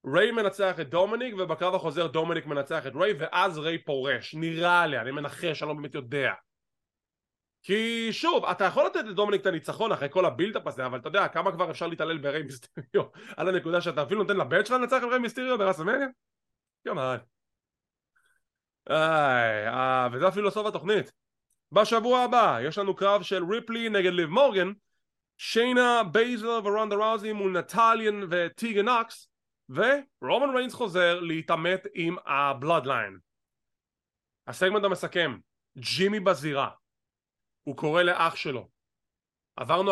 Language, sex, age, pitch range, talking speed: English, male, 20-39, 155-215 Hz, 125 wpm